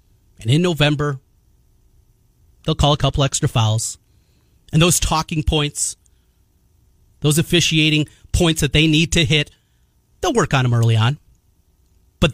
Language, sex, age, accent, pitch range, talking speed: English, male, 30-49, American, 115-180 Hz, 135 wpm